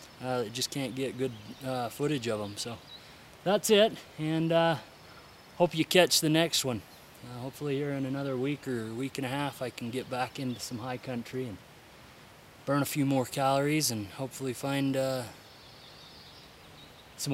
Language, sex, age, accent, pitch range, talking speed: English, male, 20-39, American, 125-165 Hz, 175 wpm